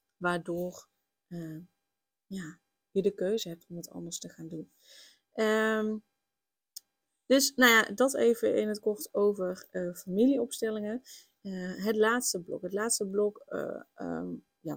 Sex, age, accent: female, 20-39, Dutch